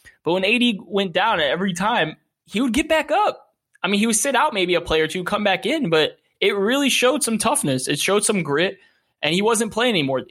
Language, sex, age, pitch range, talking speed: English, male, 20-39, 140-195 Hz, 245 wpm